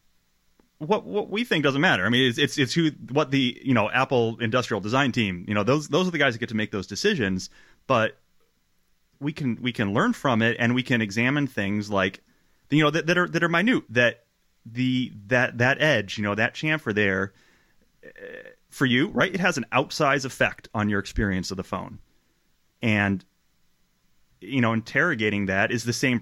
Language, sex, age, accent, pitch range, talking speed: English, male, 30-49, American, 95-130 Hz, 200 wpm